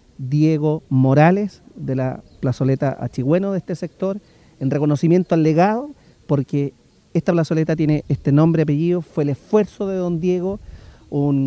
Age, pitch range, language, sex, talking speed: 40-59, 135-170 Hz, Spanish, male, 140 wpm